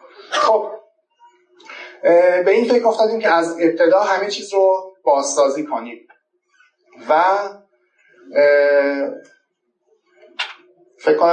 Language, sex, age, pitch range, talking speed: Persian, male, 30-49, 165-265 Hz, 80 wpm